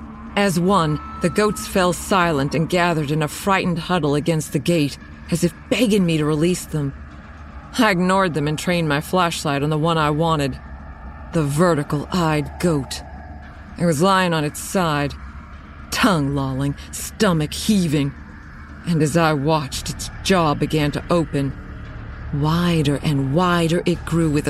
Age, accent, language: 40-59, American, English